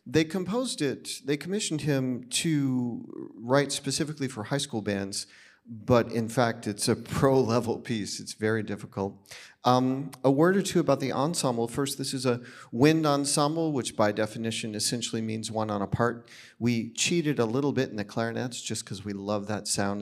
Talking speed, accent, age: 180 wpm, American, 40-59